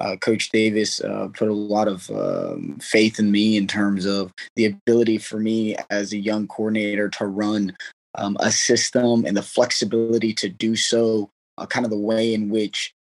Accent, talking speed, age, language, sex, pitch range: American, 190 wpm, 20-39, English, male, 105-115 Hz